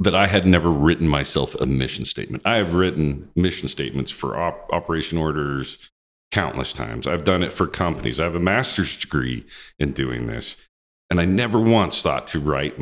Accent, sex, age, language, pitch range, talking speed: American, male, 40-59, English, 65-85 Hz, 185 wpm